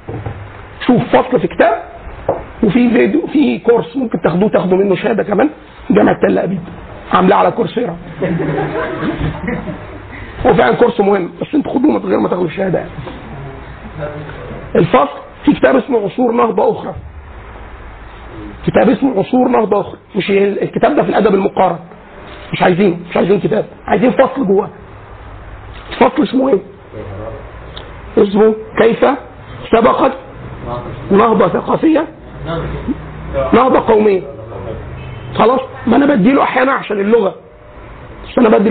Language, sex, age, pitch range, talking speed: Arabic, male, 50-69, 195-255 Hz, 120 wpm